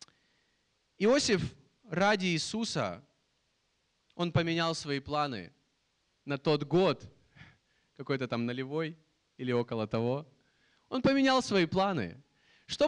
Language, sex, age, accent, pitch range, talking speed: Russian, male, 20-39, native, 150-210 Hz, 100 wpm